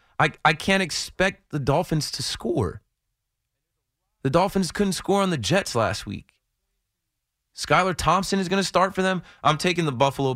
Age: 20-39